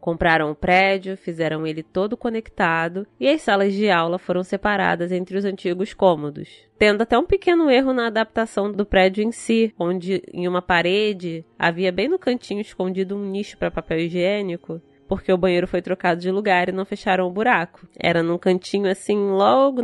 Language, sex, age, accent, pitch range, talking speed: Portuguese, female, 20-39, Brazilian, 180-225 Hz, 180 wpm